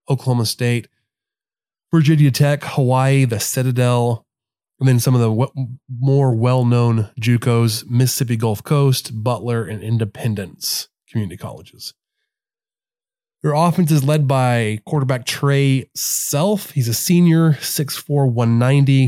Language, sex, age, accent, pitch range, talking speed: English, male, 20-39, American, 120-145 Hz, 115 wpm